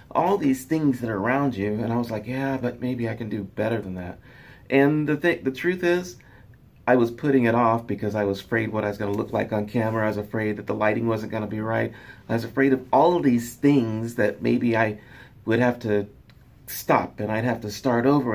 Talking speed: 250 wpm